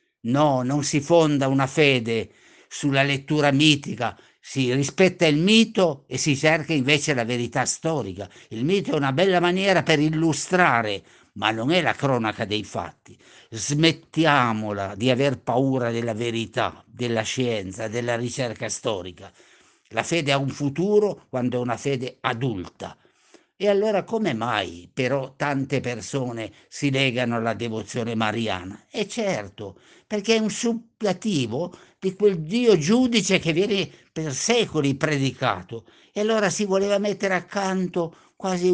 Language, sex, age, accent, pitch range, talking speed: Italian, male, 50-69, native, 125-180 Hz, 140 wpm